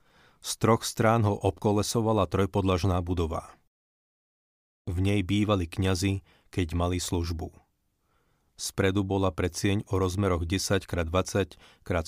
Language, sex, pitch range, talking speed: Slovak, male, 90-105 Hz, 110 wpm